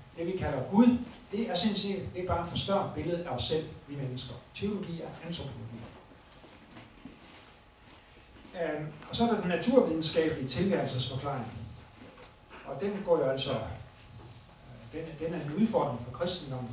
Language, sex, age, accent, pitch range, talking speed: Danish, male, 60-79, native, 120-175 Hz, 140 wpm